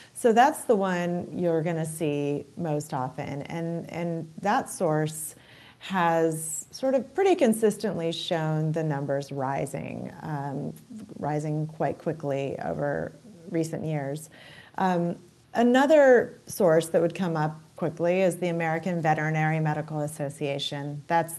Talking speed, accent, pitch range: 125 wpm, American, 150-180 Hz